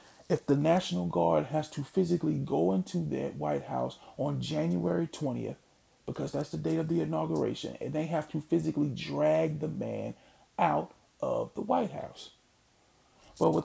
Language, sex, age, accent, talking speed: English, male, 40-59, American, 165 wpm